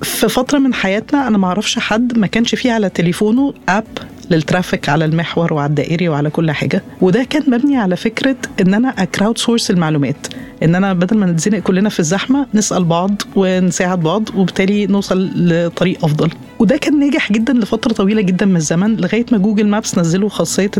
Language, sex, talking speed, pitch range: Arabic, female, 180 wpm, 180-235 Hz